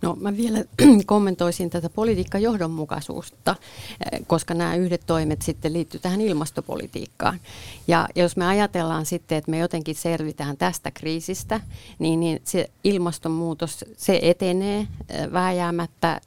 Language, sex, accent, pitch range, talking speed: Finnish, female, native, 150-190 Hz, 120 wpm